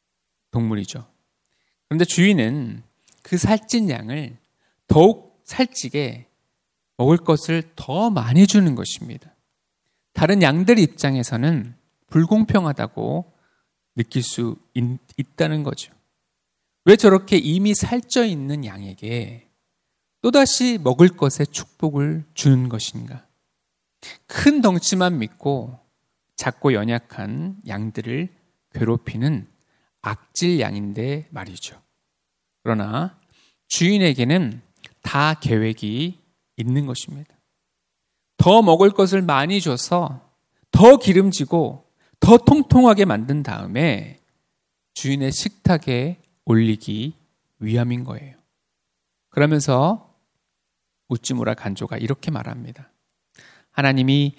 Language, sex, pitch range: Korean, male, 120-175 Hz